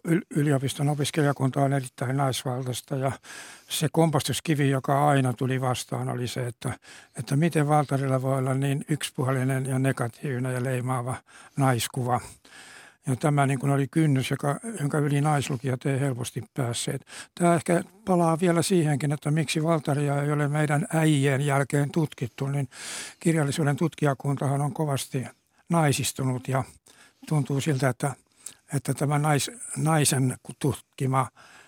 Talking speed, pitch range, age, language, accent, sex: 130 wpm, 130-150 Hz, 60-79, Finnish, native, male